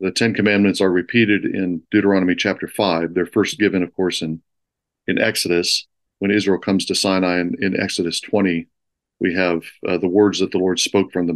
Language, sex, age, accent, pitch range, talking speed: English, male, 40-59, American, 90-105 Hz, 195 wpm